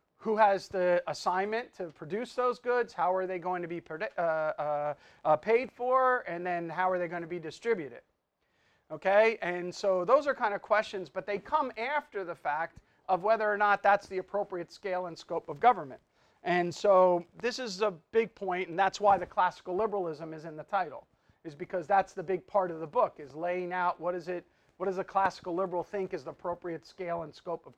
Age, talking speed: 40-59, 215 wpm